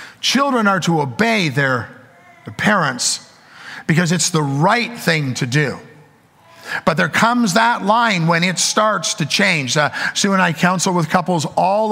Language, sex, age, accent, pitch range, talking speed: English, male, 50-69, American, 130-190 Hz, 160 wpm